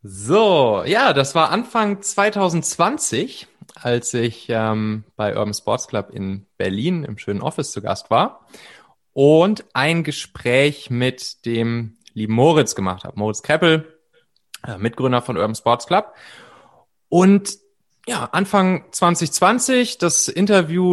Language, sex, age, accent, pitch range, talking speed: German, male, 30-49, German, 125-165 Hz, 125 wpm